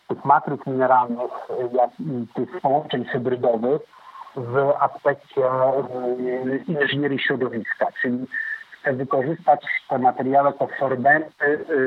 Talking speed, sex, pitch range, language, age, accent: 80 wpm, male, 125-140 Hz, Polish, 50-69, native